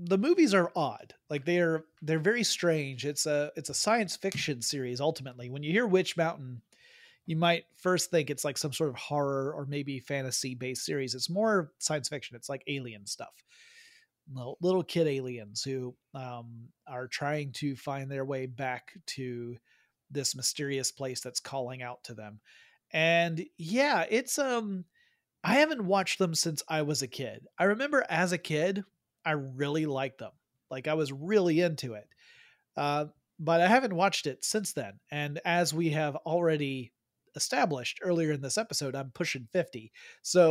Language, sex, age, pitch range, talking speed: English, male, 30-49, 135-185 Hz, 175 wpm